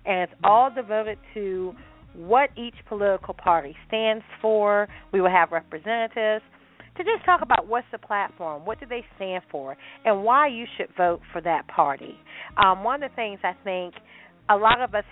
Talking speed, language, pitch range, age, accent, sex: 185 wpm, English, 175-220 Hz, 40-59, American, female